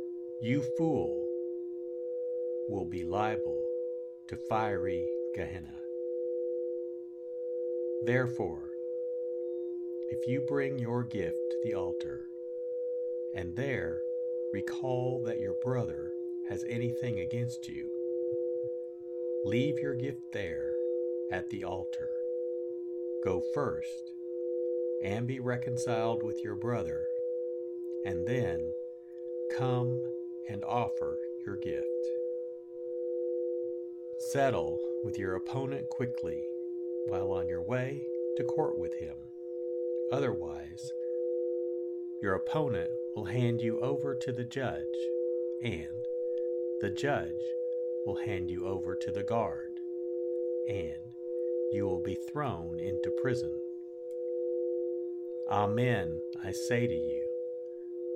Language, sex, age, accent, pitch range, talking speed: English, male, 60-79, American, 120-170 Hz, 95 wpm